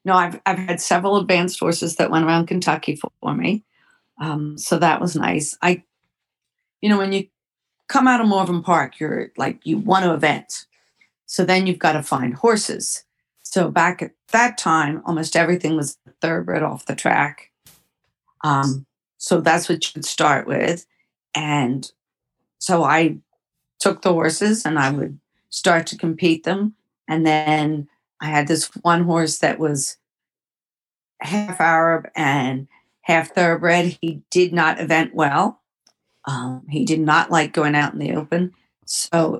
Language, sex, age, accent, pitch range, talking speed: English, female, 50-69, American, 155-180 Hz, 160 wpm